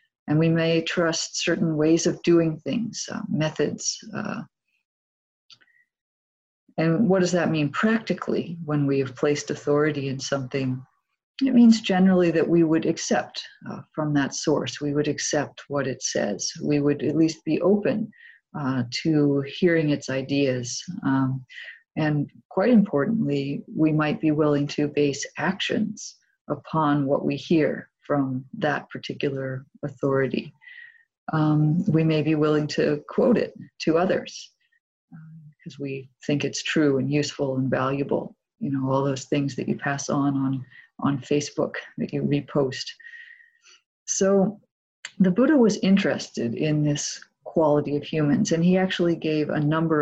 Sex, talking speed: female, 150 wpm